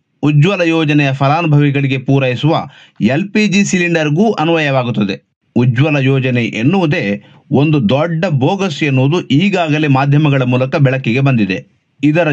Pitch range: 135-175 Hz